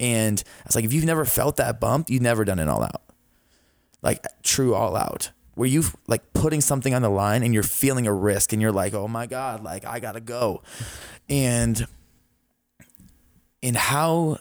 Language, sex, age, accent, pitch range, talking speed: English, male, 20-39, American, 110-130 Hz, 185 wpm